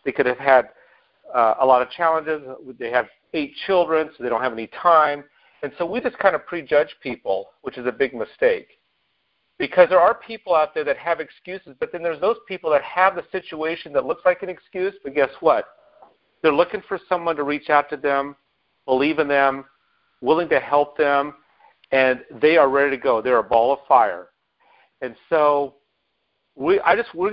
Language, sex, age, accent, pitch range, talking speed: English, male, 50-69, American, 145-190 Hz, 195 wpm